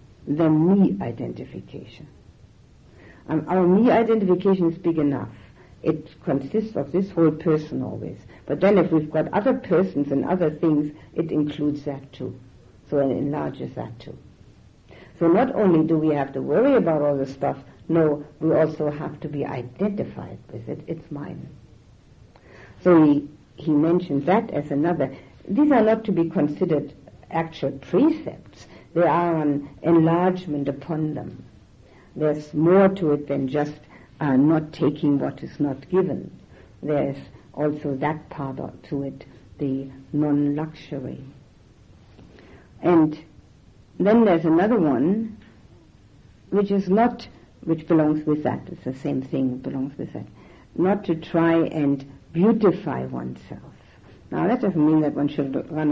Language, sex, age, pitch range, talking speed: English, female, 60-79, 135-165 Hz, 140 wpm